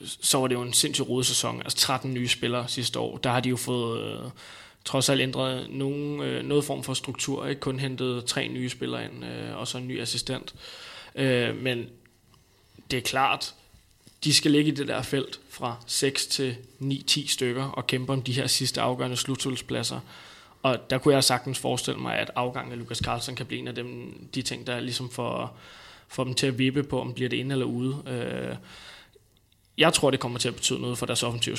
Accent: native